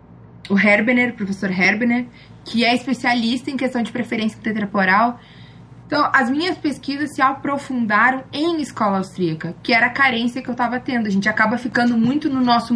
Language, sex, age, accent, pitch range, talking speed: Portuguese, female, 20-39, Brazilian, 210-255 Hz, 175 wpm